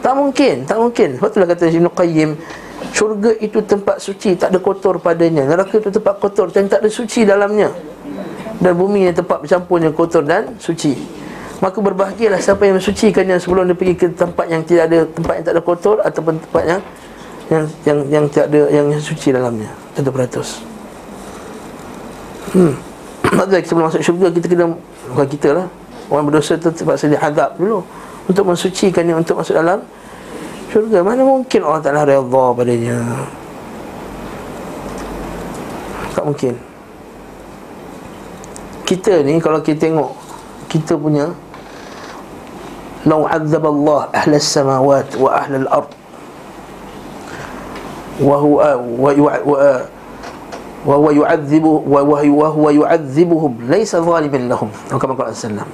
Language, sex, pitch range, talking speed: Malay, male, 150-190 Hz, 150 wpm